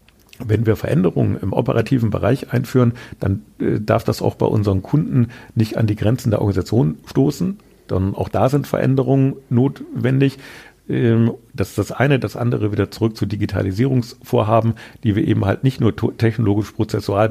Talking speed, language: 165 wpm, German